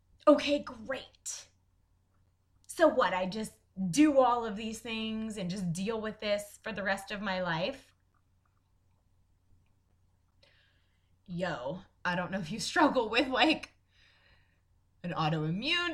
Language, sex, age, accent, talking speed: English, female, 20-39, American, 125 wpm